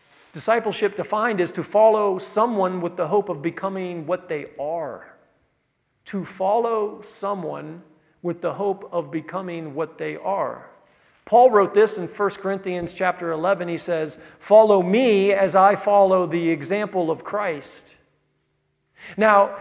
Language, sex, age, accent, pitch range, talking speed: English, male, 40-59, American, 185-235 Hz, 140 wpm